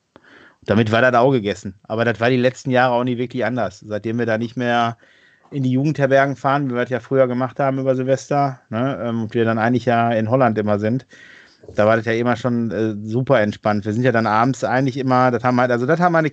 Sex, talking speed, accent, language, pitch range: male, 245 wpm, German, German, 110-130 Hz